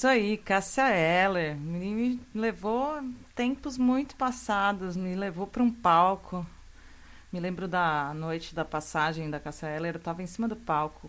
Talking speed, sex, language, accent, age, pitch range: 160 wpm, female, Portuguese, Brazilian, 40-59, 160-230 Hz